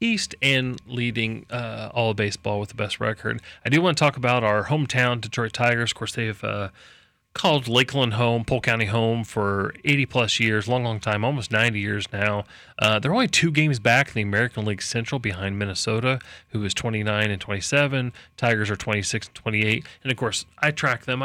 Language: English